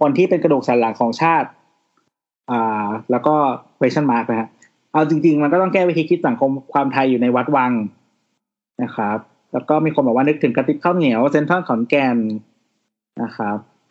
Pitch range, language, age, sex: 125-155 Hz, Thai, 20-39, male